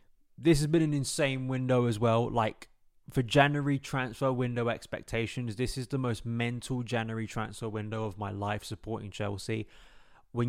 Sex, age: male, 20-39